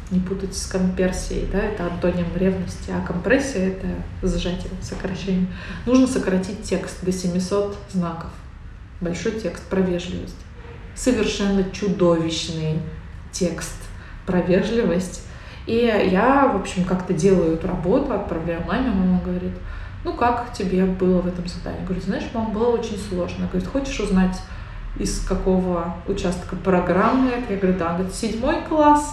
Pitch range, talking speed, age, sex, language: 175-205 Hz, 135 wpm, 20-39, female, Russian